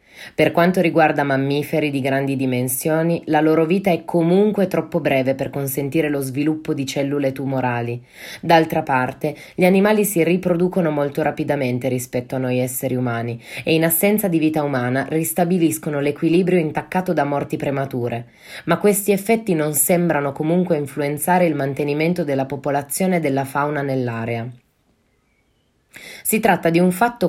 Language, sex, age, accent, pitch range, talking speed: Italian, female, 20-39, native, 140-180 Hz, 145 wpm